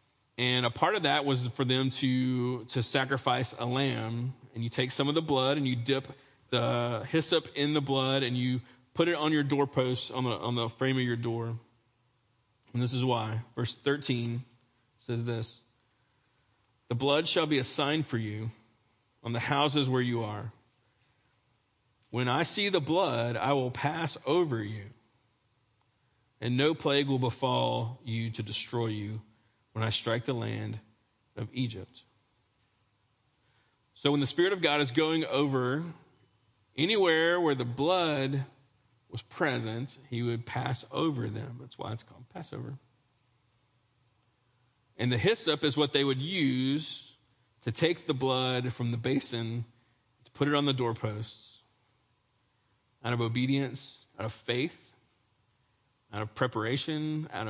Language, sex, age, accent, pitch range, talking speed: English, male, 40-59, American, 115-135 Hz, 155 wpm